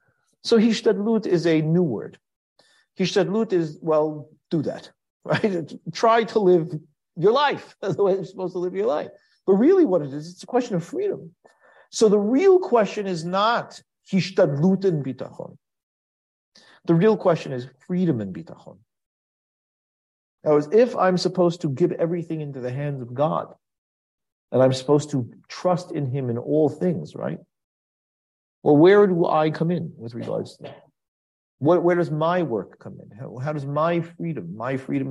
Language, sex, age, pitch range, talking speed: English, male, 50-69, 140-180 Hz, 170 wpm